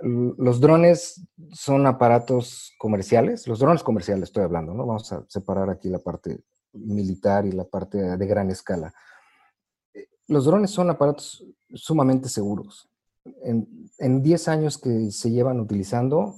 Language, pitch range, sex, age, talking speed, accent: English, 110-145 Hz, male, 50-69, 140 wpm, Mexican